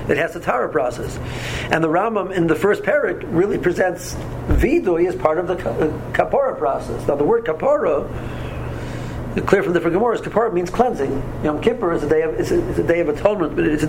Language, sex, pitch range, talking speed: English, male, 150-200 Hz, 205 wpm